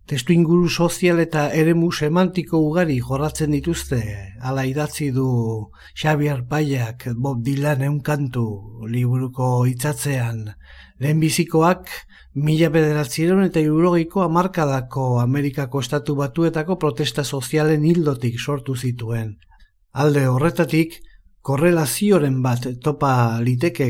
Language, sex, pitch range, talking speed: Spanish, male, 120-155 Hz, 100 wpm